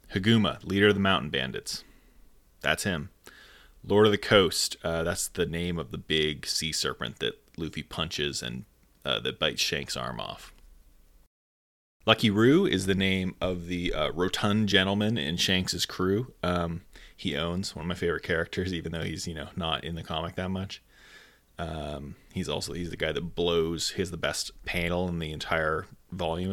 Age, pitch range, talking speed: 20-39, 85-100 Hz, 180 wpm